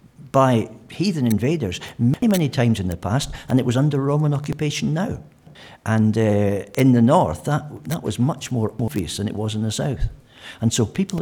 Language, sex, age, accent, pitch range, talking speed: English, male, 60-79, British, 105-140 Hz, 195 wpm